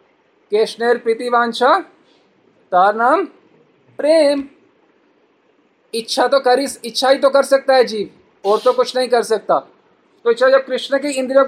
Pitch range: 220-275 Hz